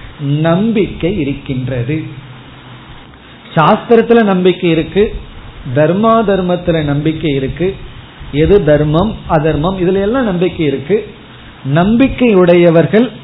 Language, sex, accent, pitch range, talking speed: Tamil, male, native, 140-190 Hz, 75 wpm